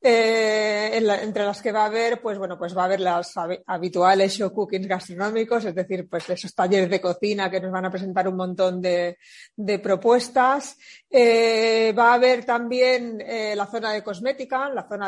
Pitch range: 190-245 Hz